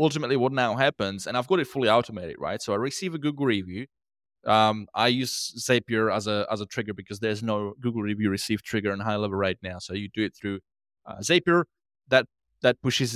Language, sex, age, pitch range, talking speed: English, male, 20-39, 105-130 Hz, 220 wpm